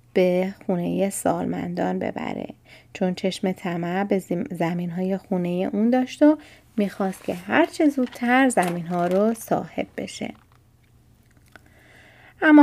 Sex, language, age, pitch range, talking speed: female, Persian, 30-49, 180-220 Hz, 115 wpm